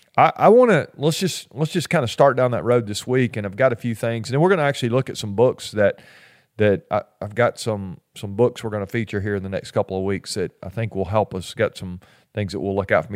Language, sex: English, male